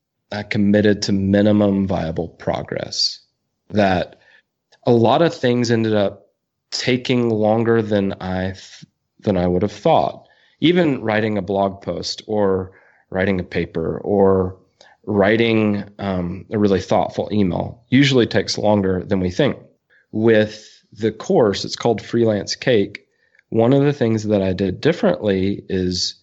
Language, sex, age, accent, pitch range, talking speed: English, male, 30-49, American, 100-125 Hz, 135 wpm